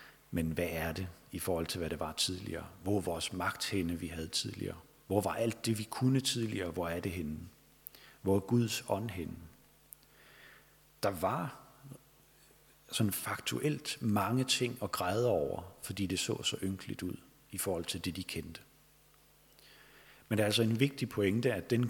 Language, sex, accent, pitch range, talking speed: Danish, male, native, 90-120 Hz, 175 wpm